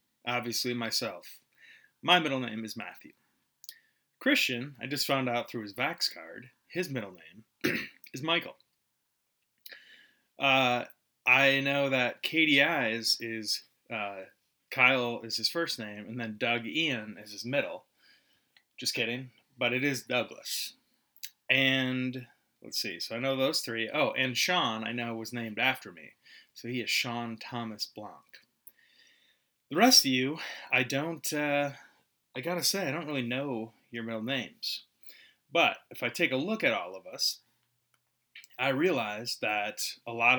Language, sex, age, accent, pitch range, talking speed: English, male, 20-39, American, 115-145 Hz, 150 wpm